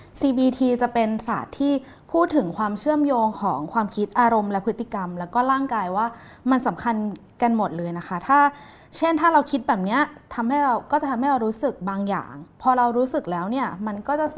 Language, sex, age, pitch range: Thai, female, 20-39, 195-265 Hz